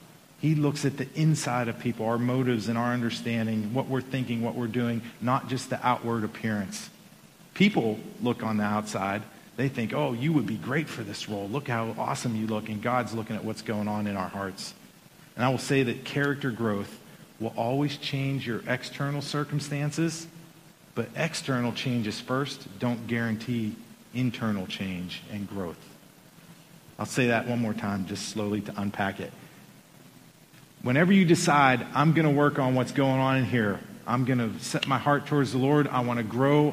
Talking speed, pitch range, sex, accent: 185 wpm, 115-155 Hz, male, American